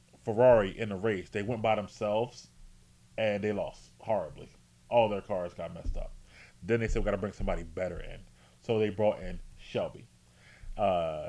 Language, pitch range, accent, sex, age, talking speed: English, 80-105 Hz, American, male, 30-49, 180 wpm